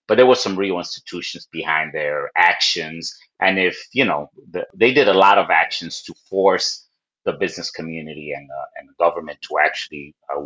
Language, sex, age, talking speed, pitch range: English, male, 30-49, 190 wpm, 80-105 Hz